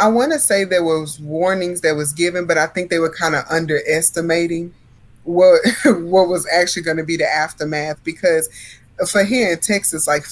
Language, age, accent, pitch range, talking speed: English, 20-39, American, 150-175 Hz, 190 wpm